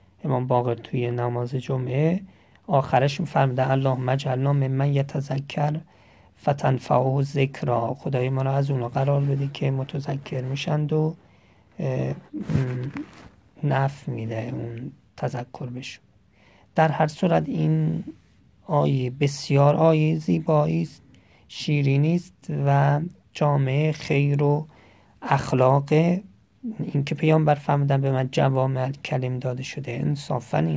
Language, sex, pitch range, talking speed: Persian, male, 125-150 Hz, 110 wpm